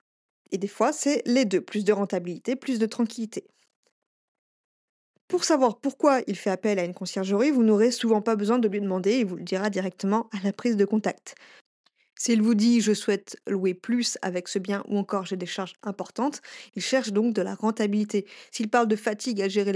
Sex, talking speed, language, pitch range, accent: female, 205 wpm, French, 200-240 Hz, French